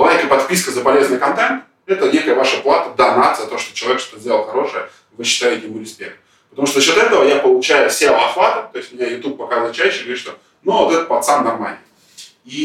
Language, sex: Russian, male